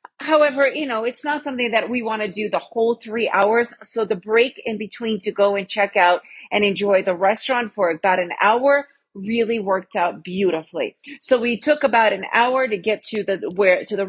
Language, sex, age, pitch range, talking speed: English, female, 40-59, 200-260 Hz, 215 wpm